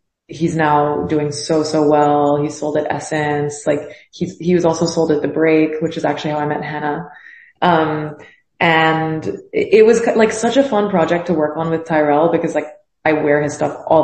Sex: female